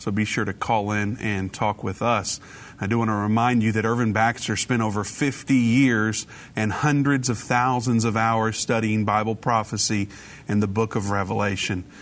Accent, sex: American, male